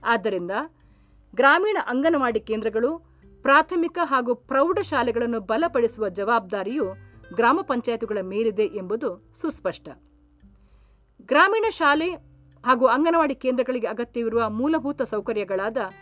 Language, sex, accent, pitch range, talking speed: Kannada, female, native, 215-285 Hz, 80 wpm